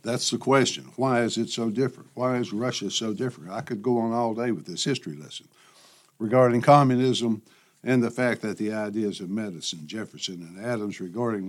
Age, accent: 60-79, American